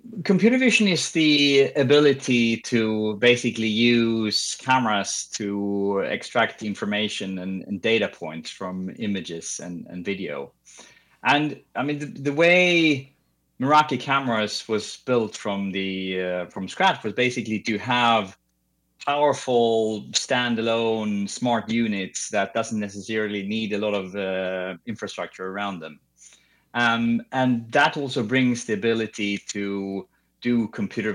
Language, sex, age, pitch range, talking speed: English, male, 30-49, 100-130 Hz, 125 wpm